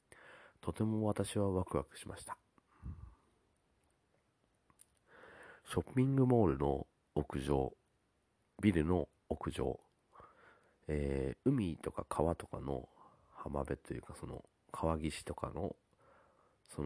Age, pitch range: 40-59, 70-100 Hz